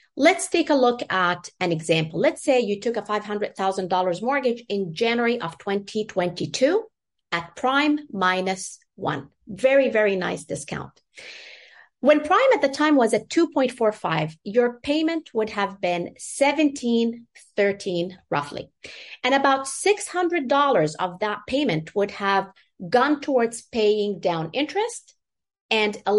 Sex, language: female, English